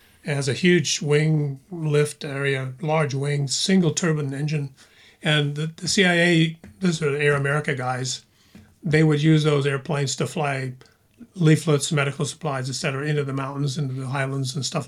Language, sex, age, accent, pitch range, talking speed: English, male, 40-59, American, 140-160 Hz, 160 wpm